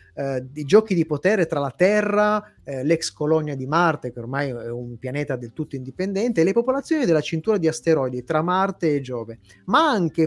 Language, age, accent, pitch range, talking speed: Italian, 30-49, native, 140-205 Hz, 200 wpm